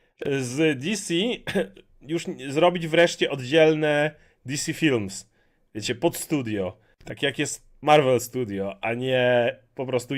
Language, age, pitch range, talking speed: Polish, 30-49, 130-170 Hz, 120 wpm